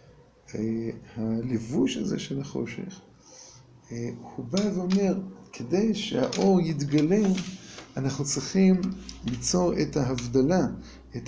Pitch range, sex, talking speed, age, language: 135-200 Hz, male, 85 wpm, 50-69, Hebrew